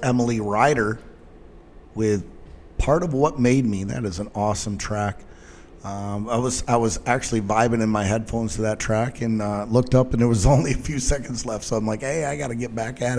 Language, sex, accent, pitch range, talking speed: English, male, American, 110-140 Hz, 220 wpm